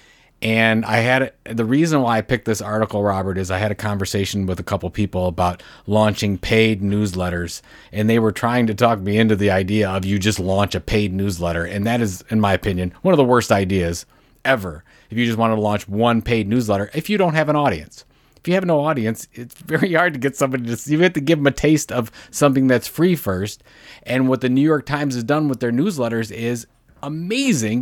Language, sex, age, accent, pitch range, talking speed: English, male, 30-49, American, 105-135 Hz, 230 wpm